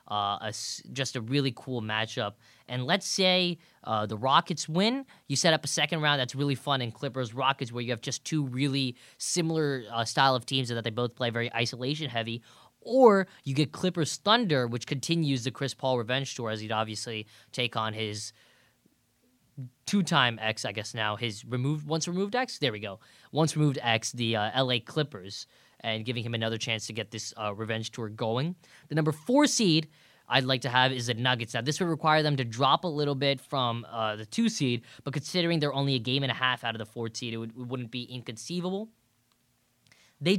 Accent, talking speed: American, 210 wpm